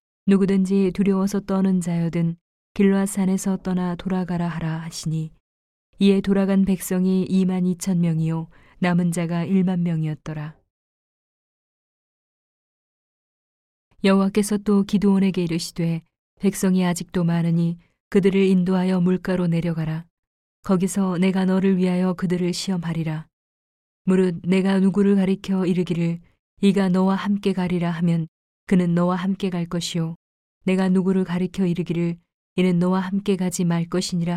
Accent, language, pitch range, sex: native, Korean, 170-190 Hz, female